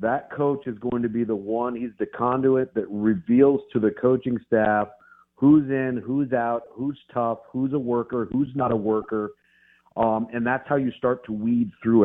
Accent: American